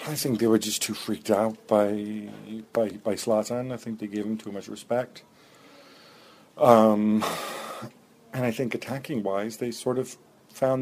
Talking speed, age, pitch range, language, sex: 160 wpm, 50-69, 105-115 Hz, English, male